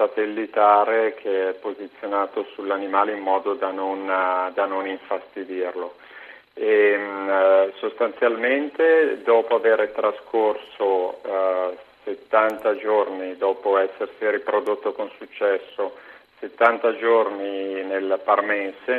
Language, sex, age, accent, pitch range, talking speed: Italian, male, 40-59, native, 95-110 Hz, 100 wpm